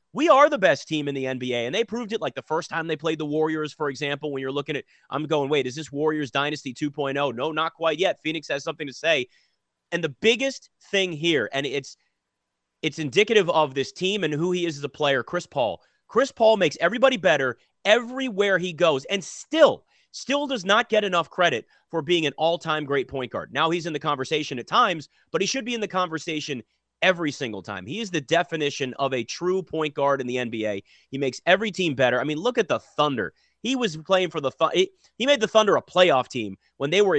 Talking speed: 230 wpm